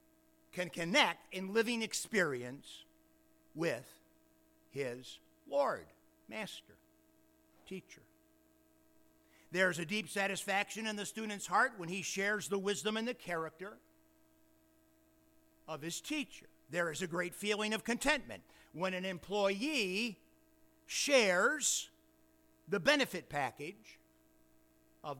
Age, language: 60-79, English